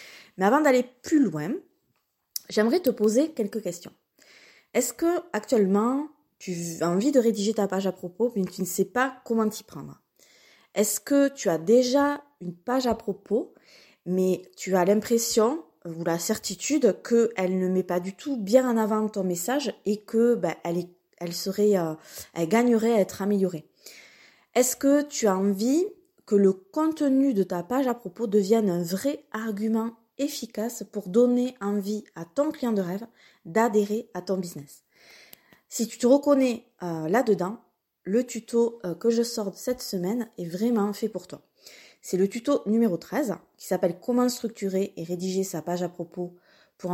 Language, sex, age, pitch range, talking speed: French, female, 20-39, 185-245 Hz, 170 wpm